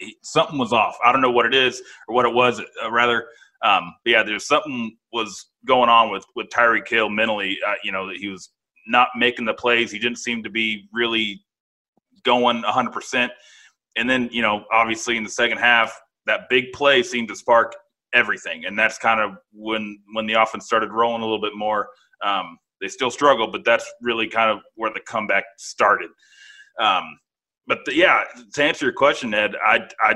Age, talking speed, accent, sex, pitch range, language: 30-49, 200 wpm, American, male, 110-125 Hz, English